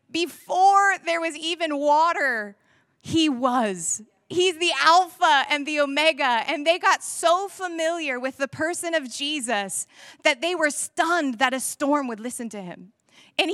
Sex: female